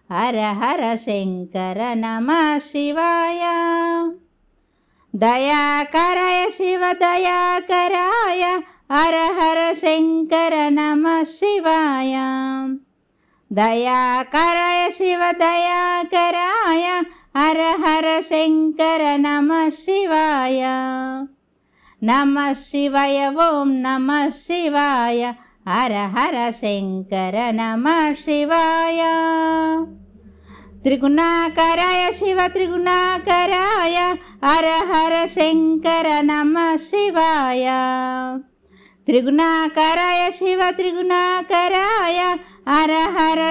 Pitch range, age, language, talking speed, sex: 265-340 Hz, 50-69, Telugu, 45 wpm, female